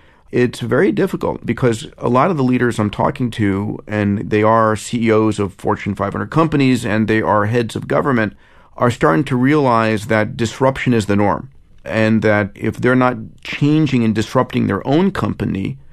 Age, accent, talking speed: 40-59, American, 175 wpm